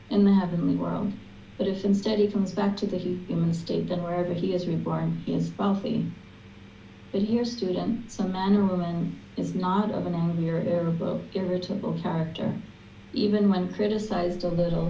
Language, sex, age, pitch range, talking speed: English, female, 40-59, 170-195 Hz, 170 wpm